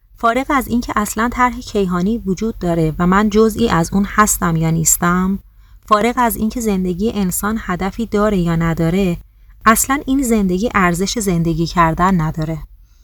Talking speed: 145 wpm